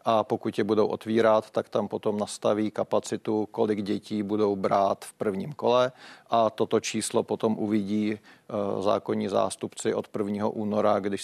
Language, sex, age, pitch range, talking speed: Czech, male, 40-59, 100-110 Hz, 150 wpm